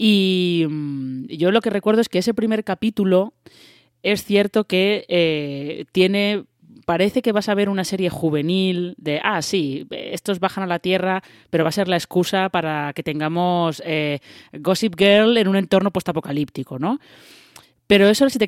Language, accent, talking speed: Spanish, Spanish, 175 wpm